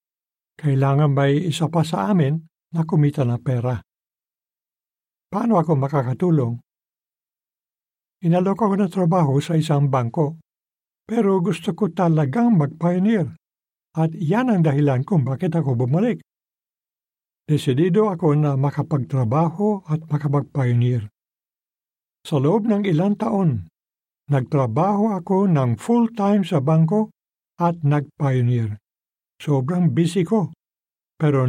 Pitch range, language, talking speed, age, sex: 140-190 Hz, Filipino, 105 wpm, 60-79, male